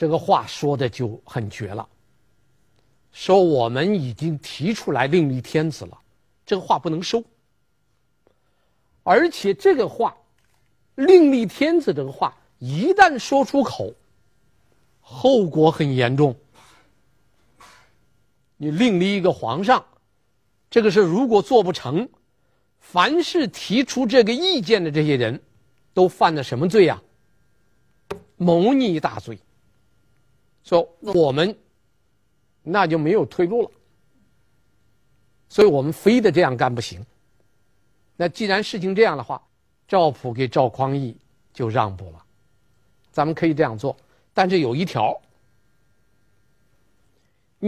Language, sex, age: Chinese, male, 50-69